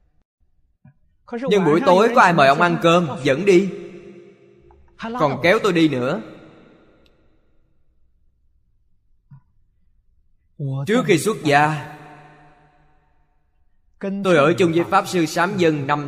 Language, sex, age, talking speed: Vietnamese, male, 20-39, 110 wpm